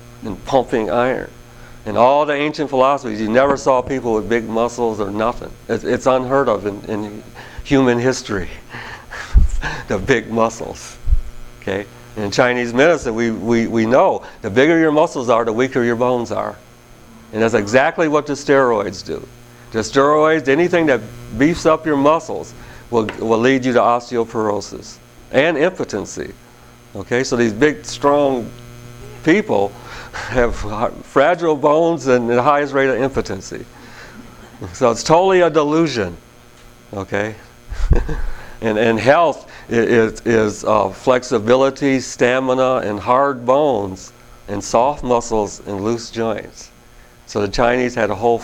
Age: 50-69